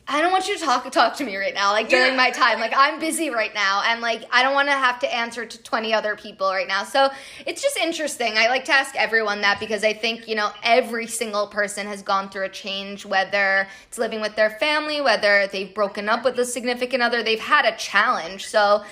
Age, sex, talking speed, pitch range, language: 20-39, female, 245 wpm, 205-250 Hz, English